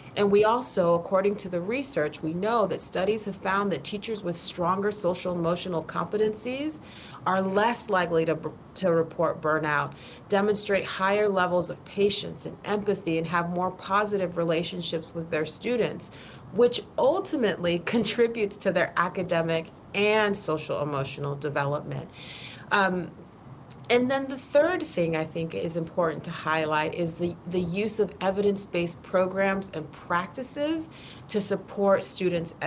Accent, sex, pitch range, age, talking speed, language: American, female, 165-205 Hz, 30-49, 135 wpm, English